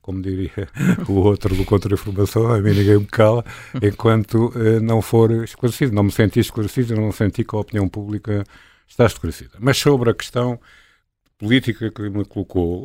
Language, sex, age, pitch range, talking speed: Portuguese, male, 50-69, 90-115 Hz, 175 wpm